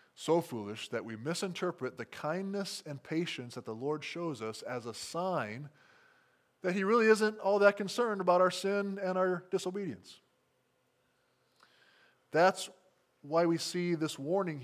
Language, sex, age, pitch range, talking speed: English, male, 20-39, 140-185 Hz, 150 wpm